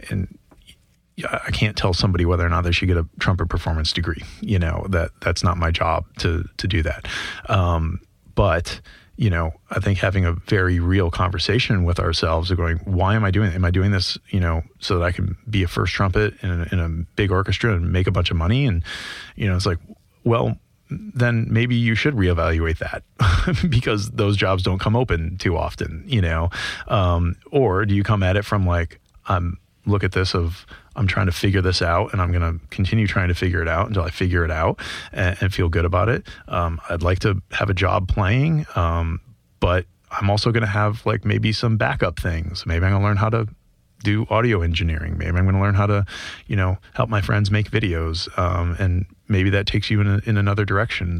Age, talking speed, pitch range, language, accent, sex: 30-49, 220 wpm, 85-105 Hz, English, American, male